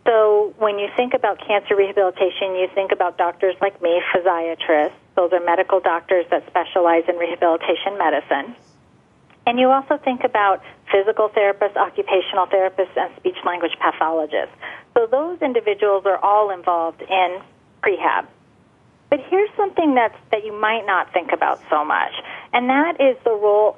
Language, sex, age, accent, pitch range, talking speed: English, female, 40-59, American, 185-270 Hz, 150 wpm